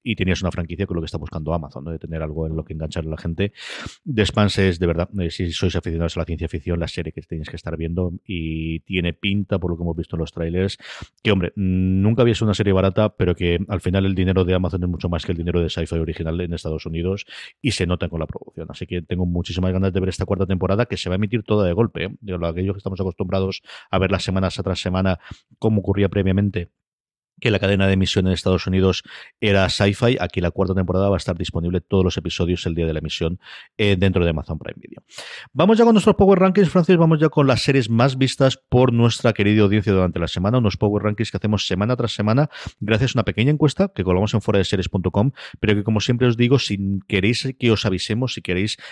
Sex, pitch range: male, 90-110 Hz